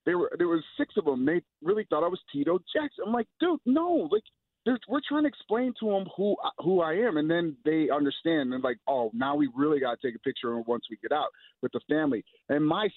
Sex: male